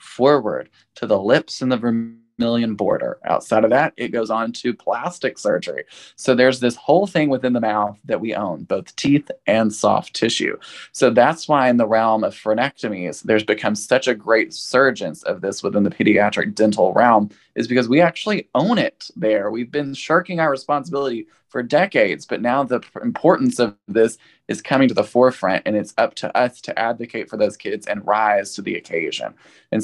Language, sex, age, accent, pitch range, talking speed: English, male, 20-39, American, 110-130 Hz, 190 wpm